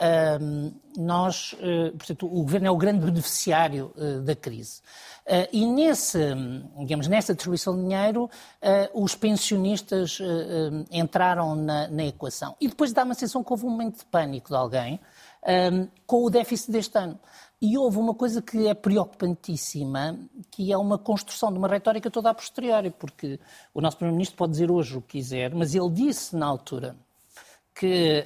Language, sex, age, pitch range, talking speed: Portuguese, male, 50-69, 160-215 Hz, 170 wpm